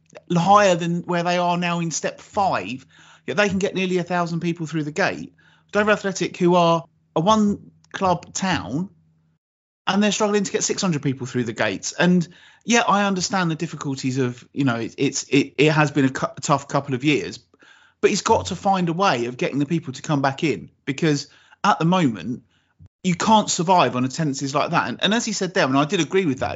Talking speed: 215 wpm